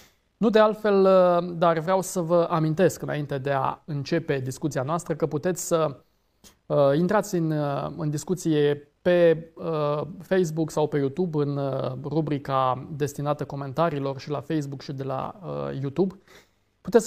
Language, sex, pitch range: Romanian, male, 145-180 Hz